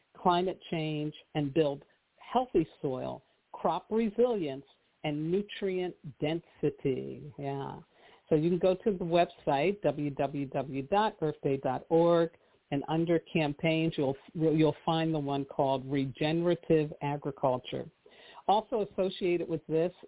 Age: 50-69